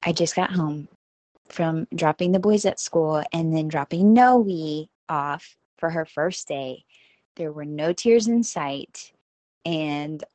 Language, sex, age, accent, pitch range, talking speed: English, female, 20-39, American, 155-195 Hz, 150 wpm